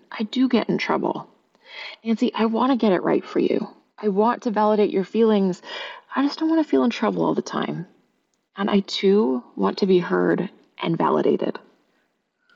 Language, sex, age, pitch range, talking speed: English, female, 30-49, 185-225 Hz, 190 wpm